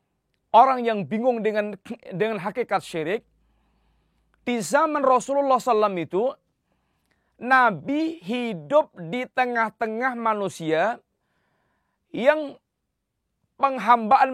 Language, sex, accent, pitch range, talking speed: Indonesian, male, native, 185-260 Hz, 80 wpm